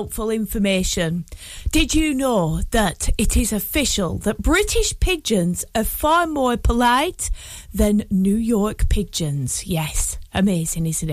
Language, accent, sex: English, British, female